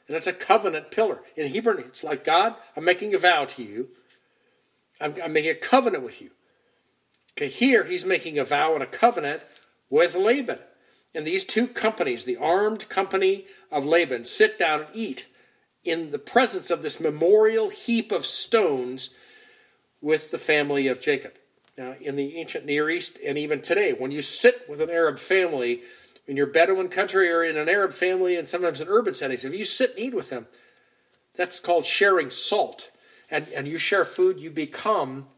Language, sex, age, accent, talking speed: English, male, 50-69, American, 185 wpm